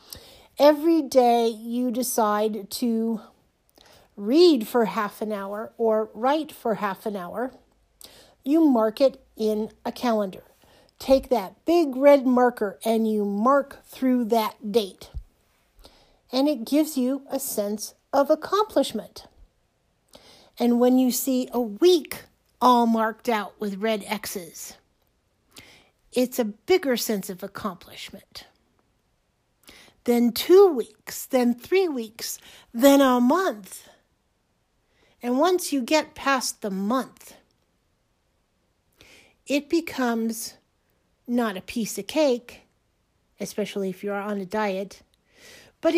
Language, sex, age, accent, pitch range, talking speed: English, female, 50-69, American, 215-270 Hz, 115 wpm